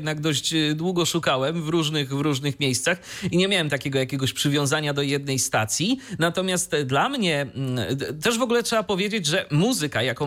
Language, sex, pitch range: Polish, male, 135-205 Hz